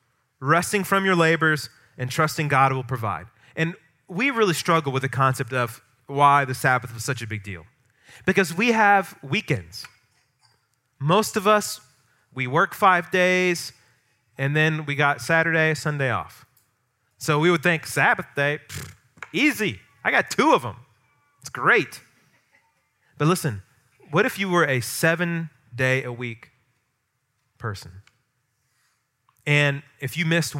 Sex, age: male, 30-49